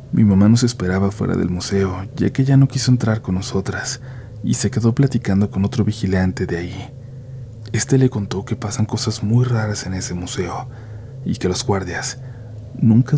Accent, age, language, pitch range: Mexican, 40-59, Spanish, 100-115 Hz